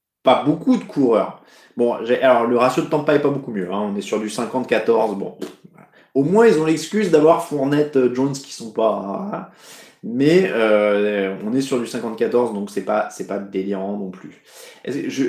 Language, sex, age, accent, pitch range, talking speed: French, male, 20-39, French, 125-175 Hz, 195 wpm